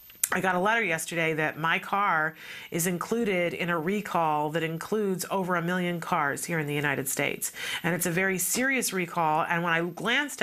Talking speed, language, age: 195 wpm, English, 40-59